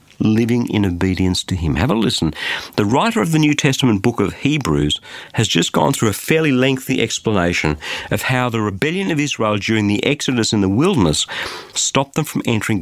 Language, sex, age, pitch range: English, male, 50-69, 90-130 Hz